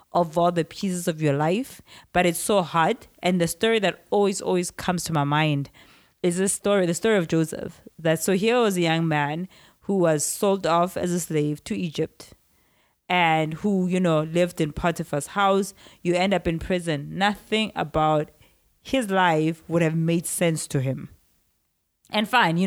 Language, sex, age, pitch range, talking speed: English, female, 20-39, 150-190 Hz, 185 wpm